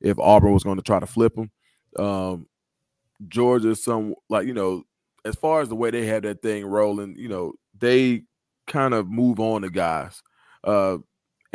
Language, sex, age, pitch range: English, male, 20-39, 100-115 Hz